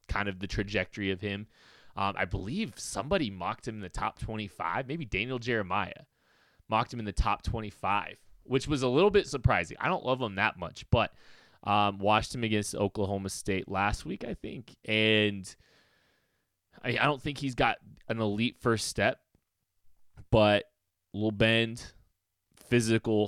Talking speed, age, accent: 165 wpm, 20-39, American